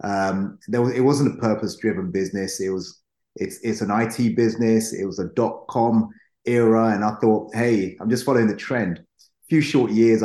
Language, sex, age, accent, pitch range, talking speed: English, male, 30-49, British, 100-120 Hz, 195 wpm